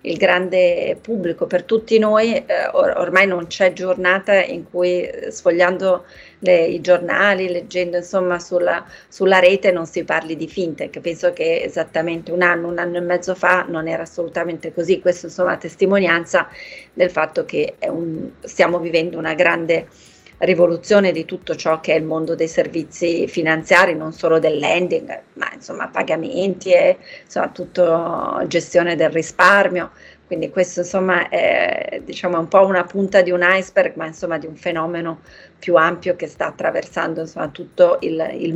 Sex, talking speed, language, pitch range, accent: female, 160 wpm, Italian, 170-190 Hz, native